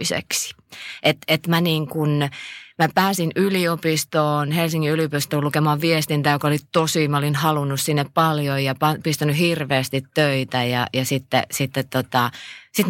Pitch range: 125-155 Hz